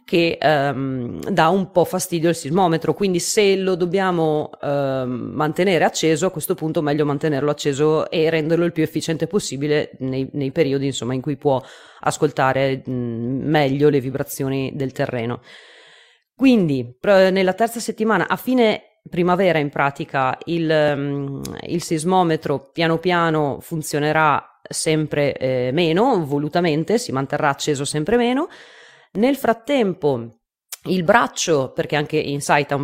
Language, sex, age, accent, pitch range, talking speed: Italian, female, 30-49, native, 145-185 Hz, 140 wpm